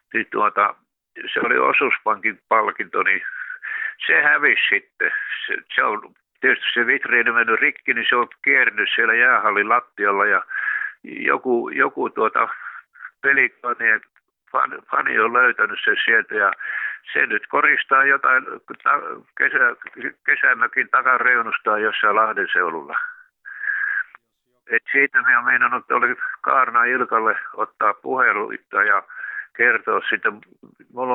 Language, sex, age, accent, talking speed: Finnish, male, 60-79, native, 115 wpm